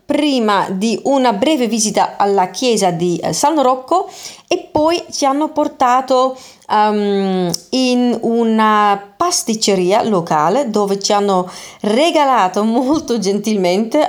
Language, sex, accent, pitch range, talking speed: Italian, female, native, 200-280 Hz, 110 wpm